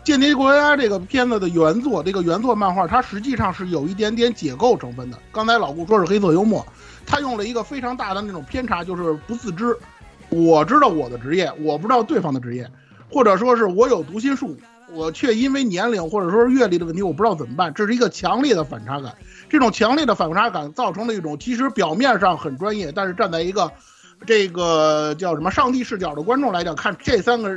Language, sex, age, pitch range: Chinese, male, 50-69, 160-235 Hz